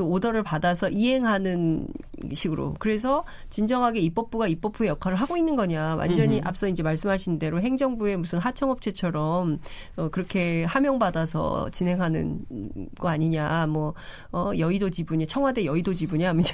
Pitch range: 170-230 Hz